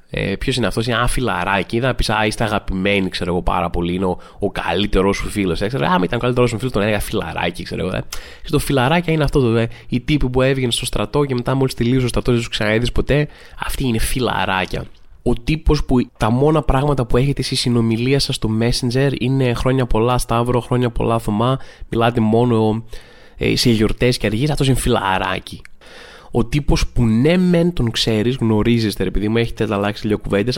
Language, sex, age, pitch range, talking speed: Greek, male, 20-39, 110-130 Hz, 210 wpm